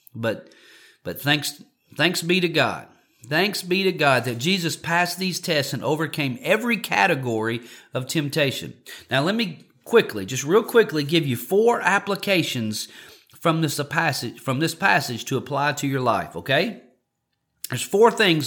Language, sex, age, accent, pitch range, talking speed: English, male, 40-59, American, 145-195 Hz, 155 wpm